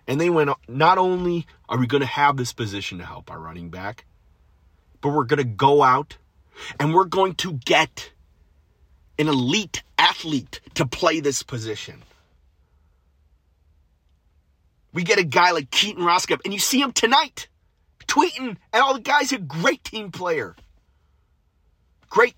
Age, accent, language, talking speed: 30-49, American, English, 155 wpm